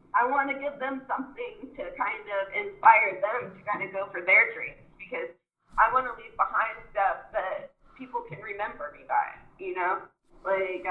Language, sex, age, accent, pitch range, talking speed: English, female, 20-39, American, 185-275 Hz, 185 wpm